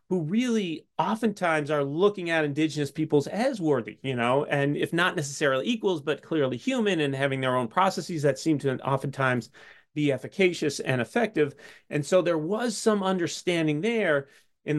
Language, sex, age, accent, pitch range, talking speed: English, male, 30-49, American, 135-175 Hz, 165 wpm